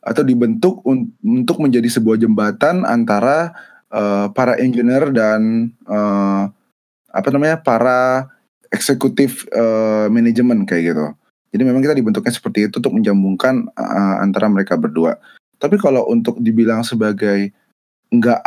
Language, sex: Indonesian, male